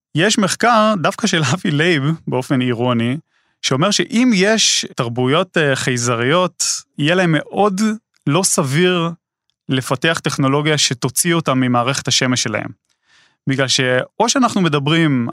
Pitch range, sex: 130-170 Hz, male